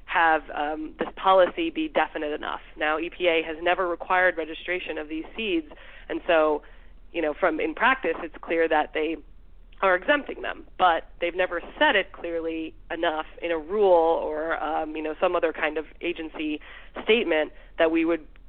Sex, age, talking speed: female, 20-39, 175 wpm